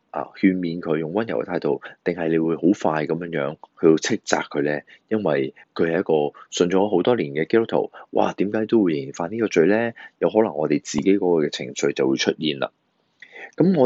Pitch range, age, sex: 75-110 Hz, 20-39, male